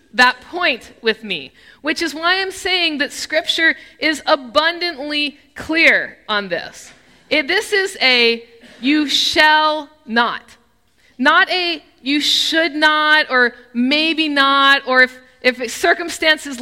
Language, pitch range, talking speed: English, 255-325 Hz, 125 wpm